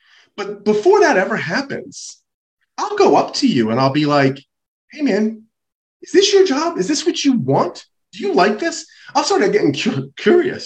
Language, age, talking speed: English, 30-49, 185 wpm